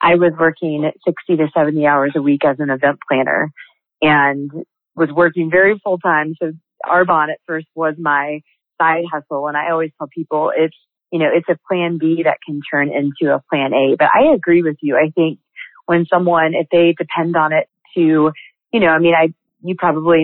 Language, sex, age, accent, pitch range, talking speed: English, female, 30-49, American, 150-165 Hz, 200 wpm